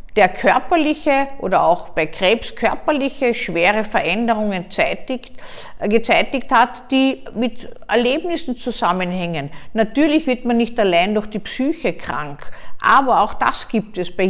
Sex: female